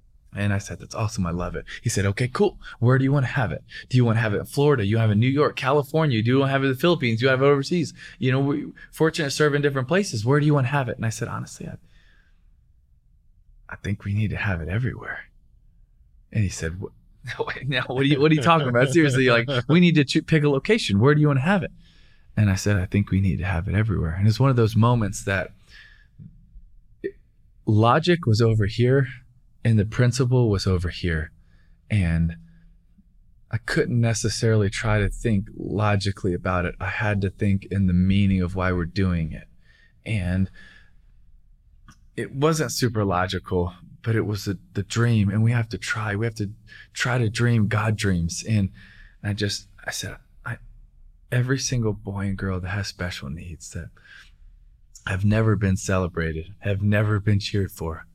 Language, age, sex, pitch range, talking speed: English, 20-39, male, 95-125 Hz, 210 wpm